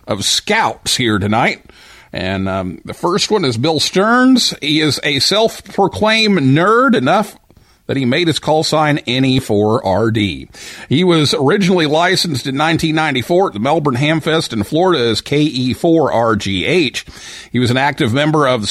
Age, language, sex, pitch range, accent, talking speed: 50-69, English, male, 110-165 Hz, American, 150 wpm